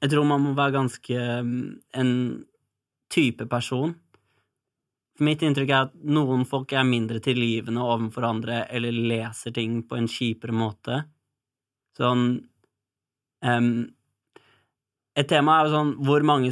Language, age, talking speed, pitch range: English, 20-39, 145 wpm, 115-135 Hz